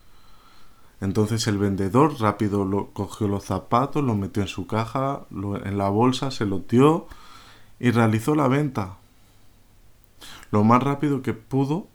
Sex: male